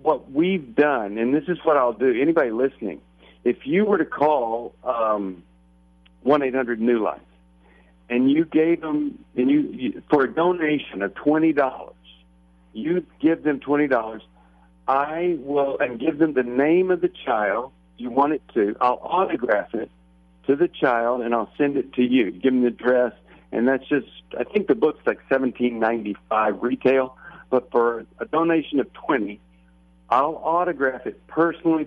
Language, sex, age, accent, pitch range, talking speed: English, male, 60-79, American, 110-150 Hz, 175 wpm